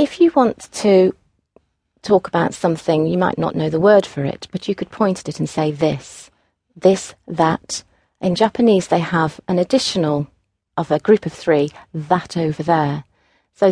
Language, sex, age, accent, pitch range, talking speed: English, female, 40-59, British, 160-205 Hz, 180 wpm